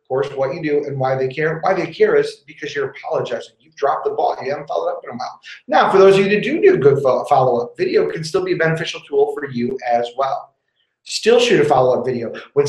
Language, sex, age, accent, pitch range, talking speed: English, male, 30-49, American, 140-205 Hz, 255 wpm